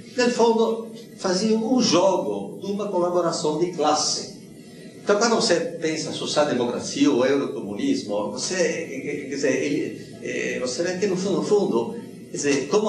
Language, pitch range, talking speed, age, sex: Portuguese, 135-205 Hz, 140 wpm, 60-79, male